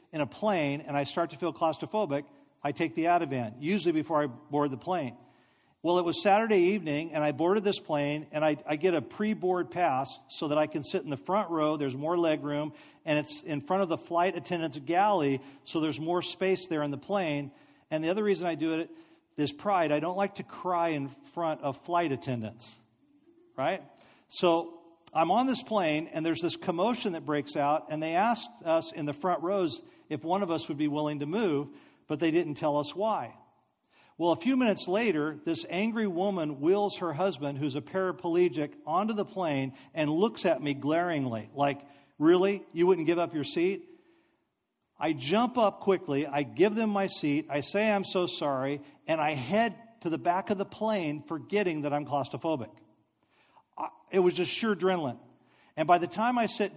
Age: 50-69